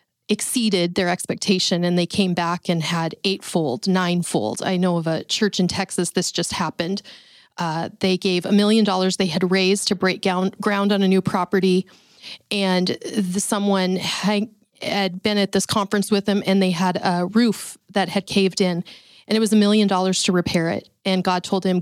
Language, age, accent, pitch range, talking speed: English, 30-49, American, 180-210 Hz, 185 wpm